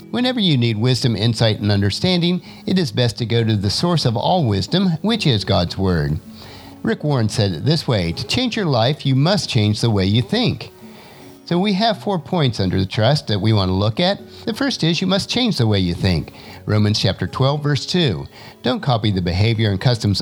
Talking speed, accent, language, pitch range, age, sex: 220 wpm, American, English, 105-170 Hz, 50-69, male